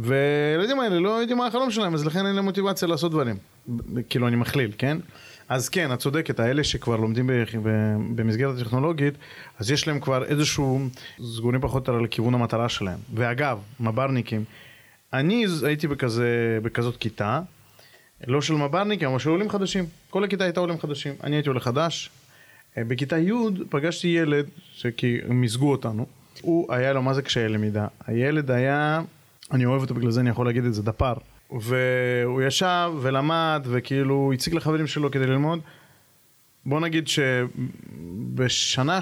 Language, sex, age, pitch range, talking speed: Hebrew, male, 30-49, 120-155 Hz, 155 wpm